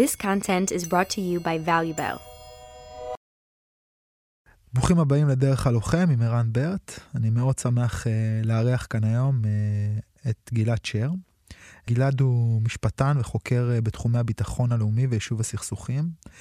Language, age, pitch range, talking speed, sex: Hebrew, 20-39, 115-130 Hz, 60 wpm, male